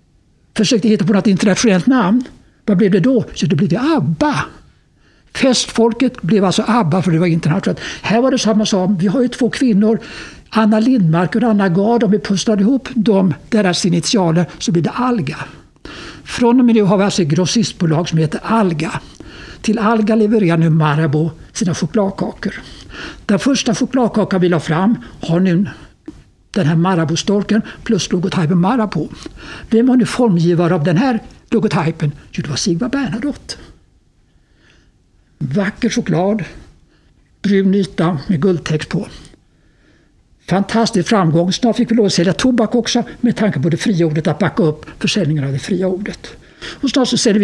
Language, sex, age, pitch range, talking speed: Swedish, male, 60-79, 175-230 Hz, 165 wpm